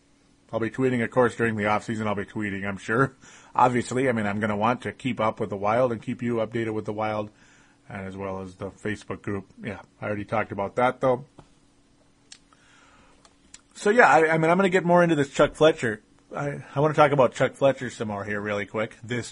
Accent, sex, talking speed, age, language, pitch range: American, male, 225 wpm, 30-49, English, 110-140 Hz